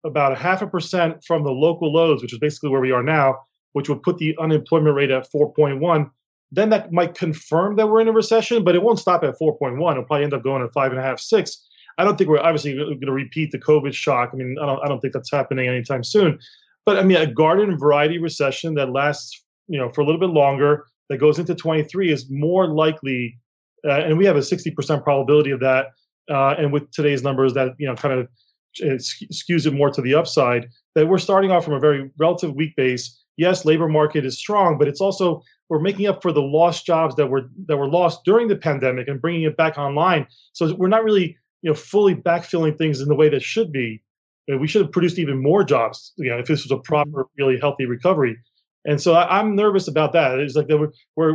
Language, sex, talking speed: English, male, 240 wpm